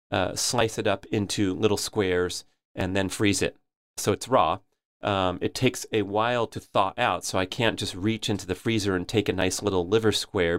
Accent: American